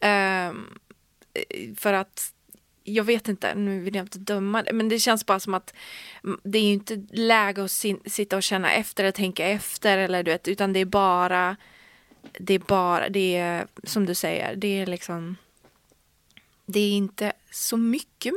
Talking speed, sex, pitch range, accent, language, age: 180 wpm, female, 190-220 Hz, Swedish, English, 20-39